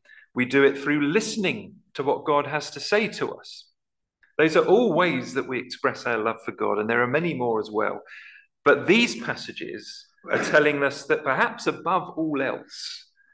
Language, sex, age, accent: English, male, 40-59, British